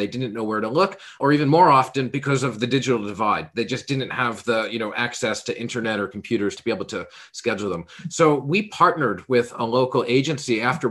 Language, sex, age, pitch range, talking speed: English, male, 40-59, 110-130 Hz, 225 wpm